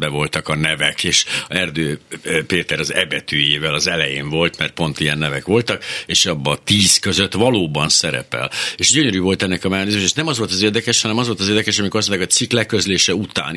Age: 60-79